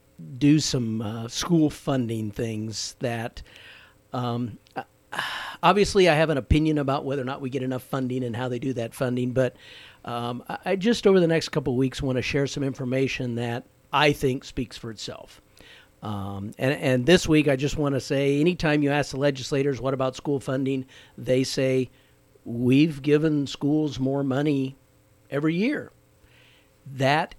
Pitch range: 120-150 Hz